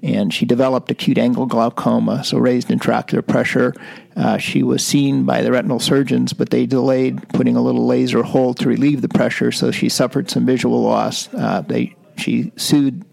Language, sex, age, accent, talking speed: English, male, 50-69, American, 185 wpm